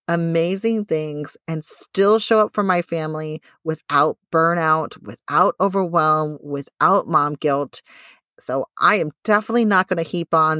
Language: English